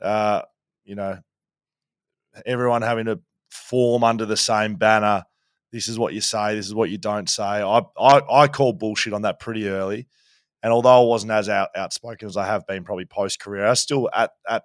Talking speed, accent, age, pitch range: 200 wpm, Australian, 20-39, 100-120 Hz